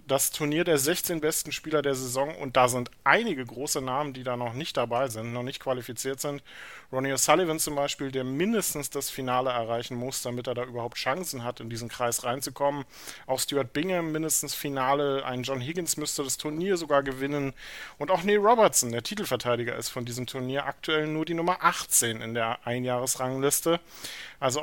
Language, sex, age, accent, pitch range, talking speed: German, male, 40-59, German, 125-155 Hz, 185 wpm